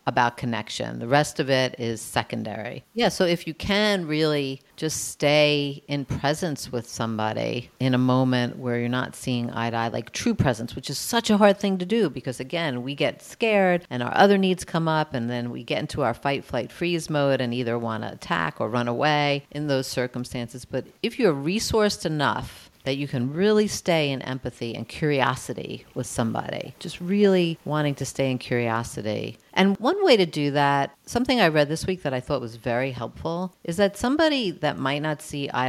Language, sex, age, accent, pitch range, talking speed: English, female, 50-69, American, 125-170 Hz, 200 wpm